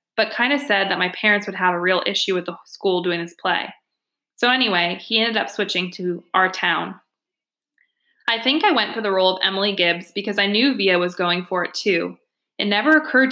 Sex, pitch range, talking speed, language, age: female, 185-250 Hz, 220 wpm, English, 20-39